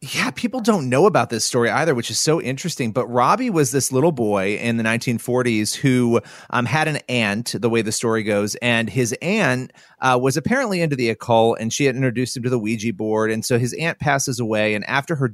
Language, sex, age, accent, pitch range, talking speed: English, male, 30-49, American, 115-140 Hz, 225 wpm